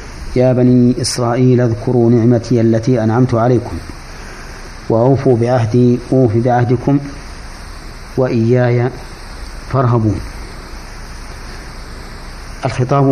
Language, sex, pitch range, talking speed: Arabic, male, 95-125 Hz, 70 wpm